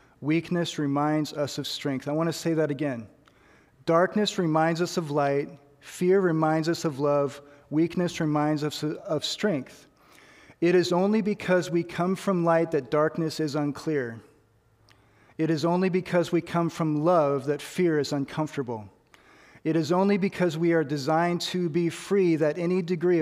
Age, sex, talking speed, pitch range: 40-59, male, 165 wpm, 145-175 Hz